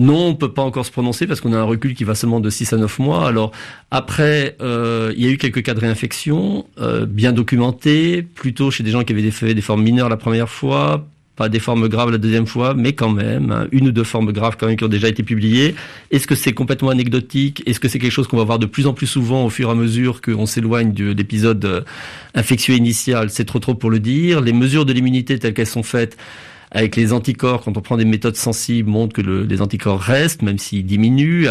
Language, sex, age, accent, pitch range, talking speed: Spanish, male, 40-59, French, 110-135 Hz, 250 wpm